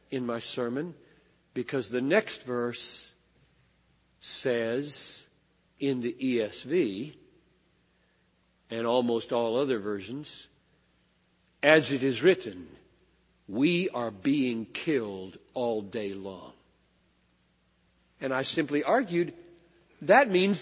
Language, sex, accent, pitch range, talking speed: English, male, American, 115-185 Hz, 95 wpm